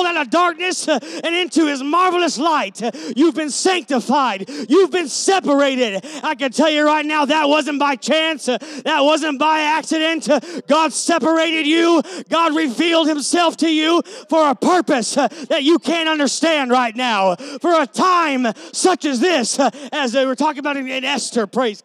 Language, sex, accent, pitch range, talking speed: English, male, American, 240-315 Hz, 160 wpm